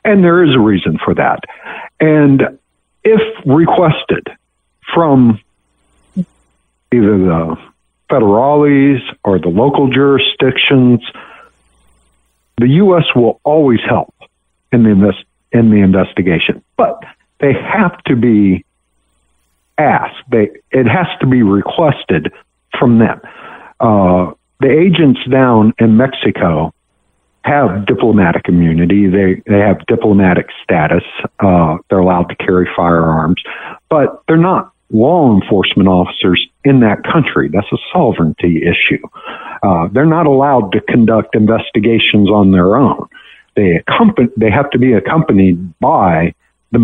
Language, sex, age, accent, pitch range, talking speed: English, male, 60-79, American, 90-130 Hz, 120 wpm